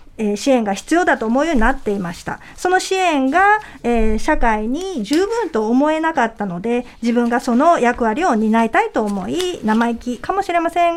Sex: female